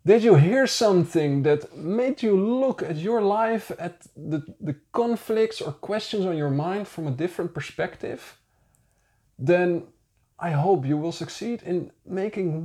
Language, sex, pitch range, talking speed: English, male, 140-185 Hz, 150 wpm